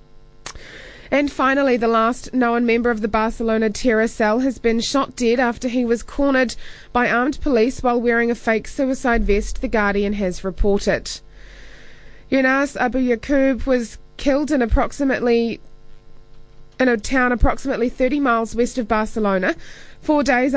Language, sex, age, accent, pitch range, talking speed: English, female, 20-39, Australian, 225-260 Hz, 145 wpm